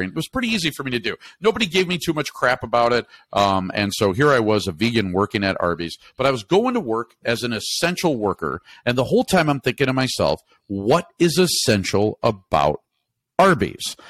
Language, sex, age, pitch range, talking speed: English, male, 50-69, 100-135 Hz, 215 wpm